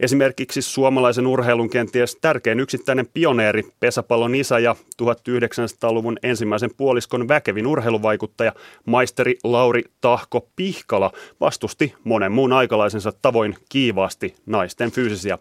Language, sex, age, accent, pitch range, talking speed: Finnish, male, 30-49, native, 115-135 Hz, 105 wpm